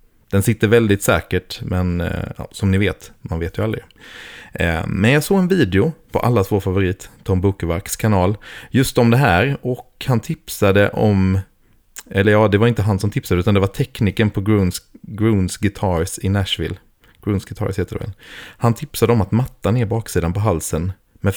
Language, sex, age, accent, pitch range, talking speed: Swedish, male, 30-49, native, 95-115 Hz, 190 wpm